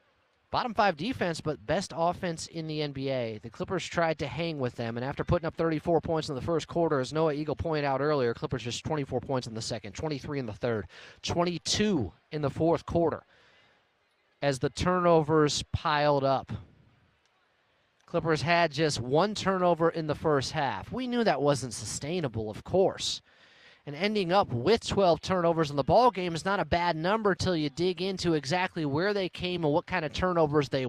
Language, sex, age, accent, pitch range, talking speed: English, male, 30-49, American, 135-170 Hz, 190 wpm